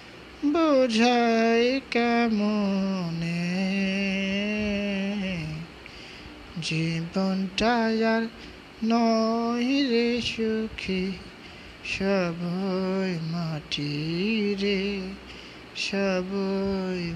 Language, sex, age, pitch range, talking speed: Bengali, male, 20-39, 190-235 Hz, 40 wpm